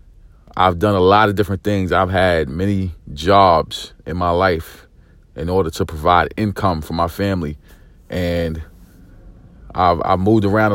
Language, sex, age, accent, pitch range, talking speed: English, male, 40-59, American, 85-100 Hz, 150 wpm